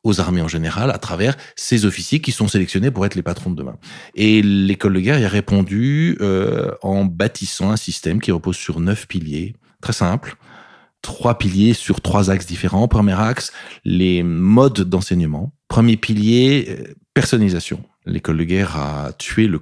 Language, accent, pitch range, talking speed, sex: French, French, 85-110 Hz, 170 wpm, male